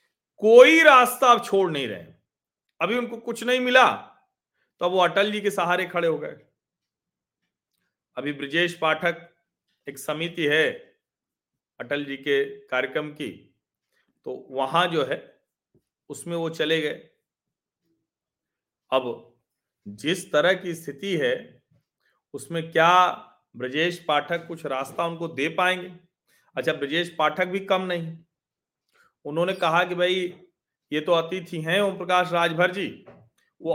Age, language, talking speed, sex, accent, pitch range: 40-59, Hindi, 130 wpm, male, native, 140-185 Hz